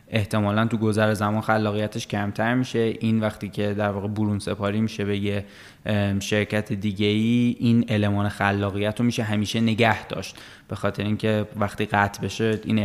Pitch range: 105-120 Hz